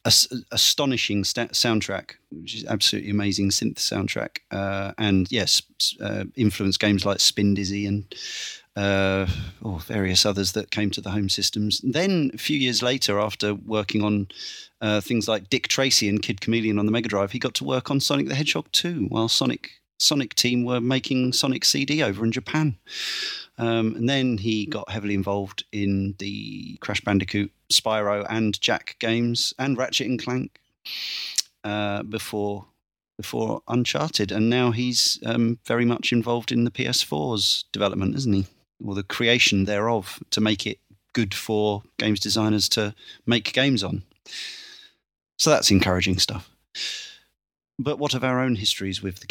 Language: English